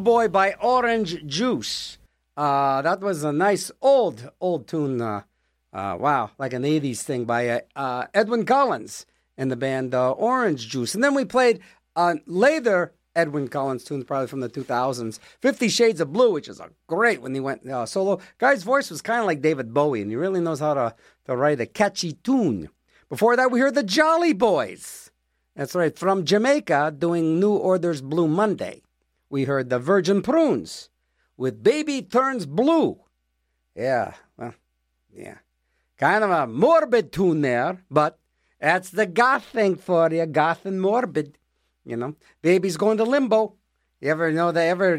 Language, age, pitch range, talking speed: English, 50-69, 140-215 Hz, 175 wpm